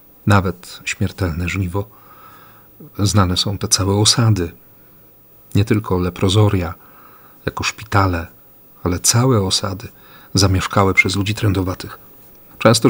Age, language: 40-59, Polish